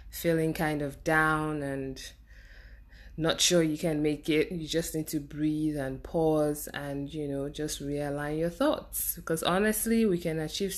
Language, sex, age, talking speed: English, female, 20-39, 165 wpm